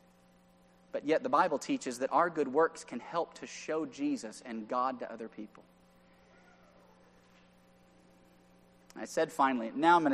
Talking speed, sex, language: 150 wpm, male, English